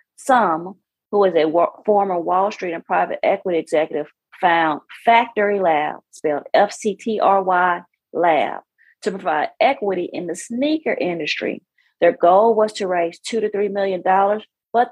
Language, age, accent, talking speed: English, 40-59, American, 155 wpm